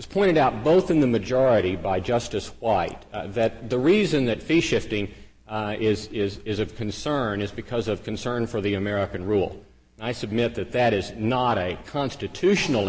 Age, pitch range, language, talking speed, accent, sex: 50-69, 110-160 Hz, English, 185 wpm, American, male